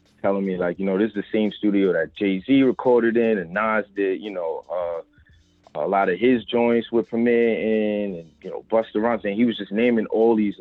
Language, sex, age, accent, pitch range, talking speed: English, male, 20-39, American, 95-115 Hz, 230 wpm